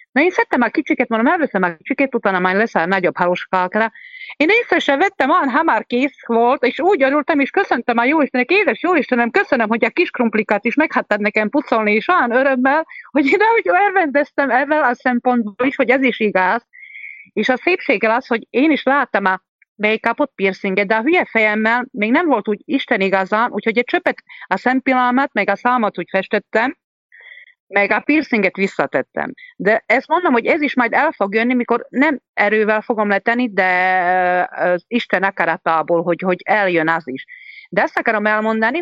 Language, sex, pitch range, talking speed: English, female, 225-305 Hz, 180 wpm